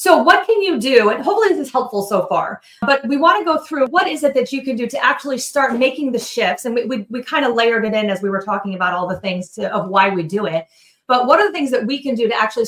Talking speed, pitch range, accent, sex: 310 wpm, 205-260 Hz, American, female